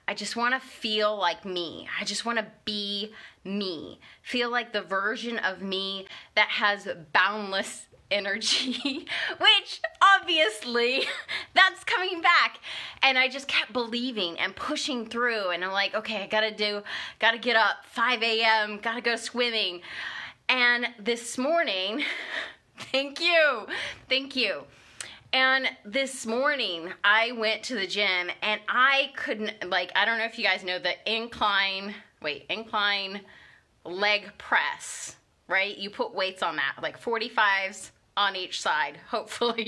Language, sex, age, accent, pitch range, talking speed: English, female, 20-39, American, 205-255 Hz, 145 wpm